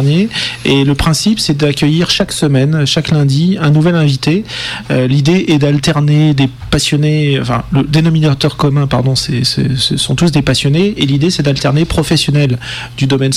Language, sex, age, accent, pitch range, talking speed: French, male, 40-59, French, 125-155 Hz, 165 wpm